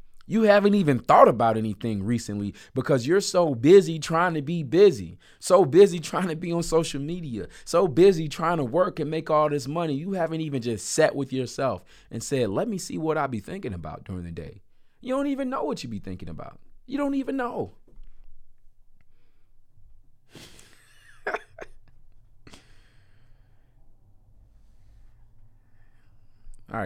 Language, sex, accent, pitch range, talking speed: English, male, American, 100-150 Hz, 150 wpm